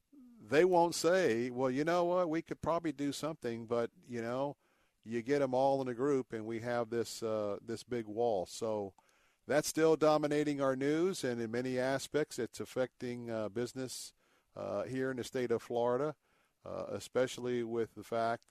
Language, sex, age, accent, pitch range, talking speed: English, male, 50-69, American, 110-125 Hz, 180 wpm